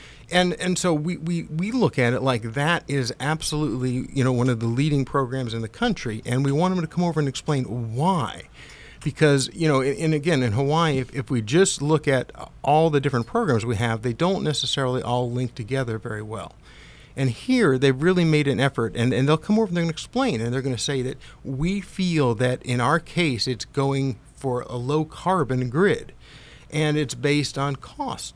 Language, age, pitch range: English, 50-69, 125-155 Hz